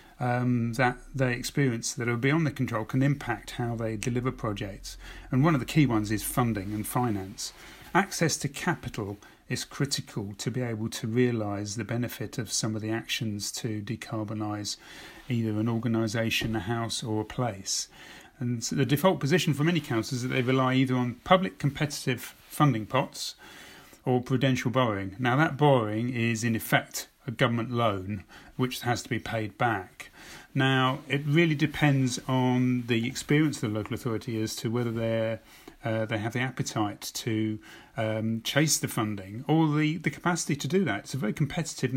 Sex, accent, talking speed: male, British, 175 wpm